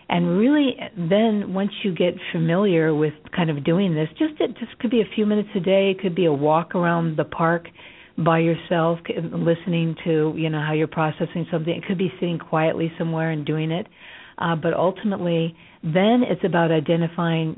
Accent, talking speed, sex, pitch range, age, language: American, 190 wpm, female, 155-180 Hz, 50-69, English